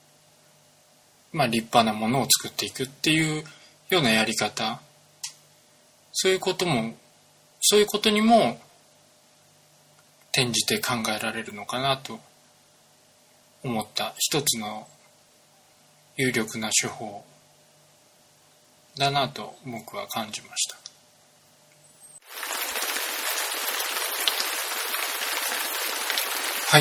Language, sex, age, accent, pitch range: Japanese, male, 20-39, native, 115-165 Hz